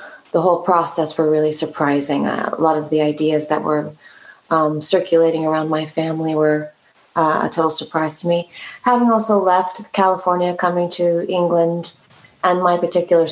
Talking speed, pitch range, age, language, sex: 160 wpm, 165-190 Hz, 20-39, English, female